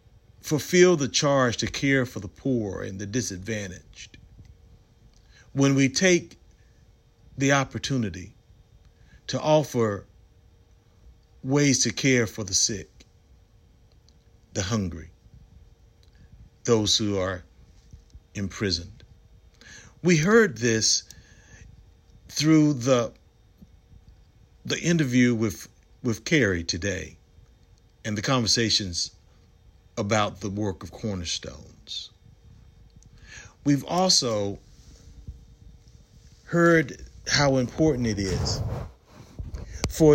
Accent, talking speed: American, 85 wpm